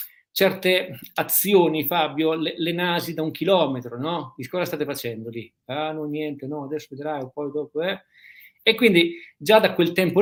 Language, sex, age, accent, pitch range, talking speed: Italian, male, 50-69, native, 135-170 Hz, 180 wpm